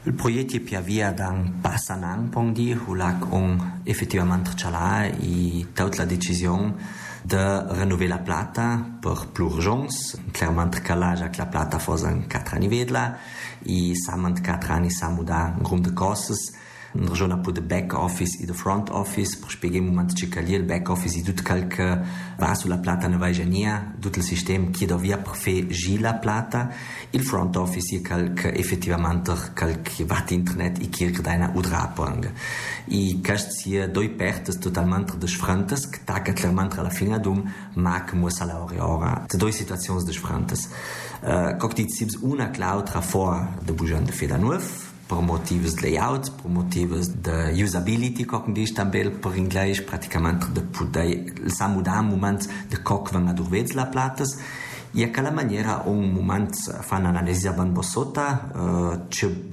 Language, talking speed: Italian, 170 wpm